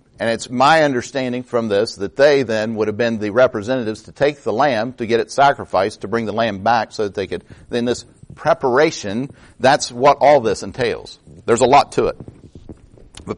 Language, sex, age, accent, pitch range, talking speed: English, male, 50-69, American, 115-150 Hz, 200 wpm